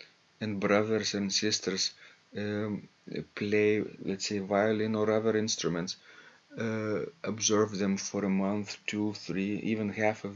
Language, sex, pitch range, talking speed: English, male, 100-115 Hz, 135 wpm